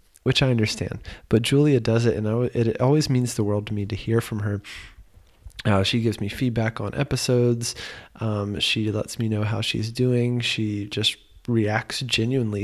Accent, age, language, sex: American, 20-39, English, male